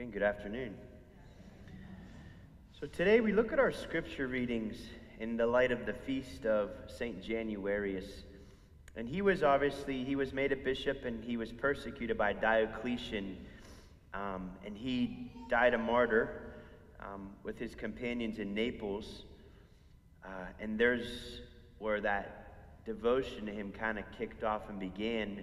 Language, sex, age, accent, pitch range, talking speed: English, male, 30-49, American, 100-140 Hz, 140 wpm